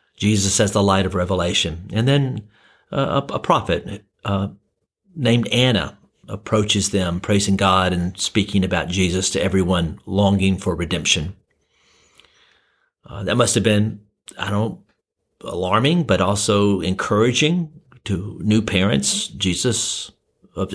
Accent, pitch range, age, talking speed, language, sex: American, 95-115 Hz, 50-69, 130 wpm, English, male